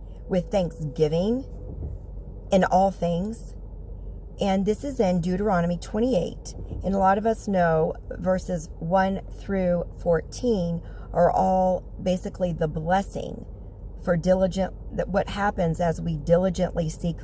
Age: 40-59